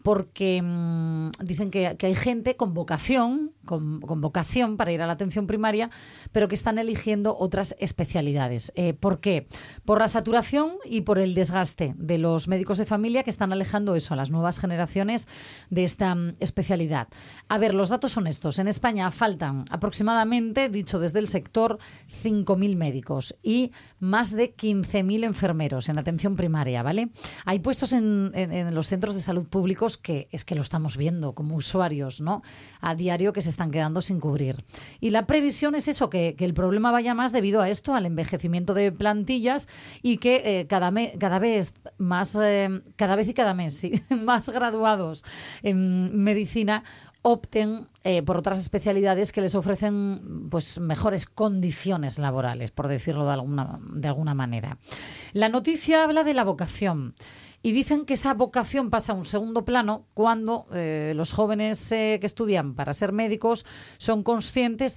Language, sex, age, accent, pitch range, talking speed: Spanish, female, 30-49, Spanish, 170-220 Hz, 175 wpm